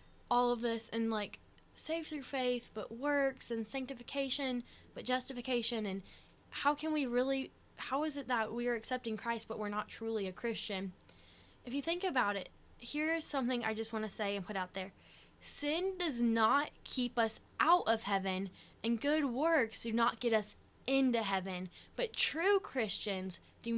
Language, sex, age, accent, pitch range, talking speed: English, female, 10-29, American, 205-270 Hz, 175 wpm